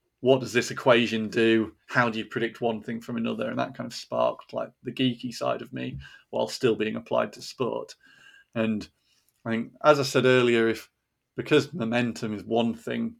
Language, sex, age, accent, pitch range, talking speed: English, male, 30-49, British, 115-135 Hz, 195 wpm